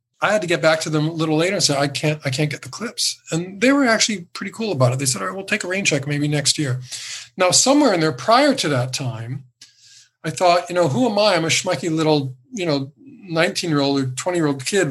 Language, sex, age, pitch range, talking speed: English, male, 40-59, 130-170 Hz, 275 wpm